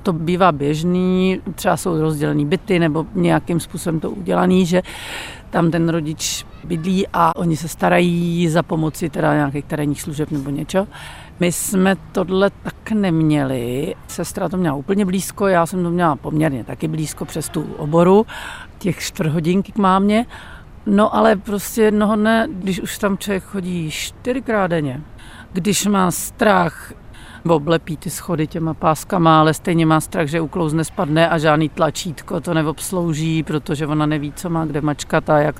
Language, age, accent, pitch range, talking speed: Czech, 50-69, native, 155-190 Hz, 160 wpm